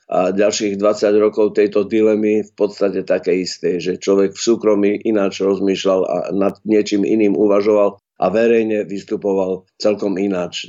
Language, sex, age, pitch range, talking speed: Slovak, male, 50-69, 100-115 Hz, 145 wpm